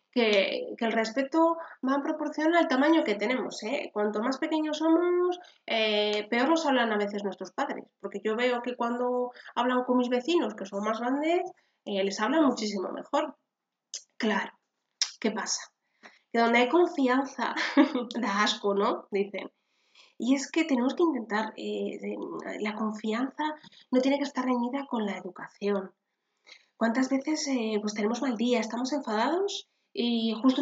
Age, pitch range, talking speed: 20-39, 205-290 Hz, 160 wpm